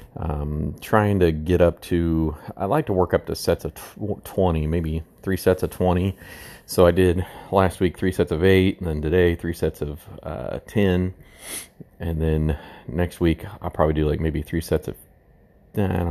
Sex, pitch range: male, 75-90 Hz